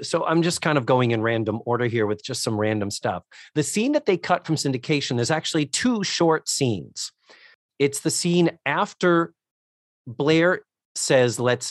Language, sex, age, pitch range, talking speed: English, male, 40-59, 115-150 Hz, 175 wpm